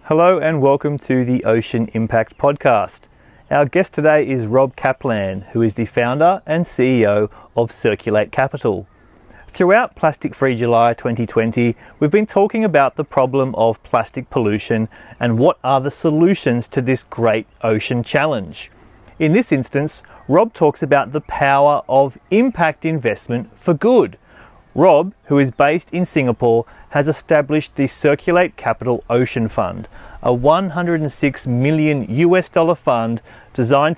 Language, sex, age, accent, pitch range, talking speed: English, male, 30-49, Australian, 120-155 Hz, 140 wpm